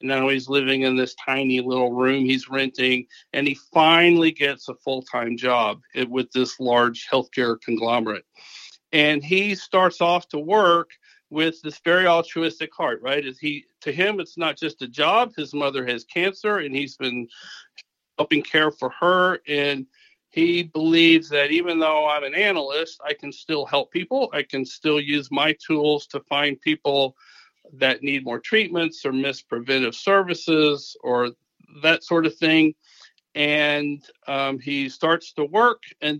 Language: English